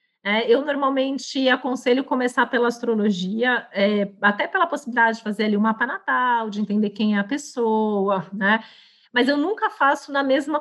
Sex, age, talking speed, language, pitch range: female, 40-59, 160 wpm, Portuguese, 210-250 Hz